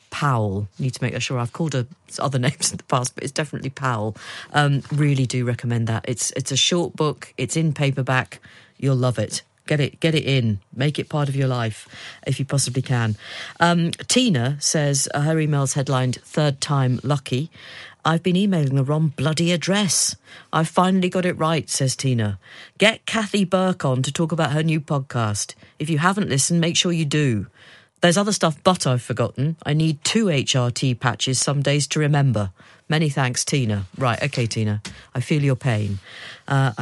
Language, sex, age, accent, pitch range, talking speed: English, female, 40-59, British, 120-155 Hz, 190 wpm